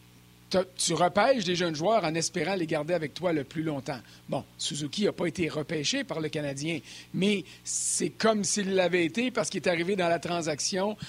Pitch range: 150-200 Hz